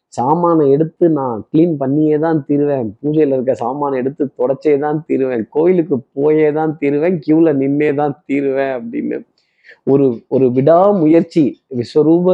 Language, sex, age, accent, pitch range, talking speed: Tamil, male, 20-39, native, 135-165 Hz, 120 wpm